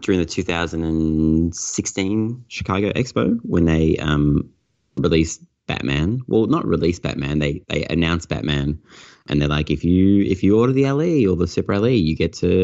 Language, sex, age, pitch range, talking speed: English, male, 30-49, 75-95 Hz, 165 wpm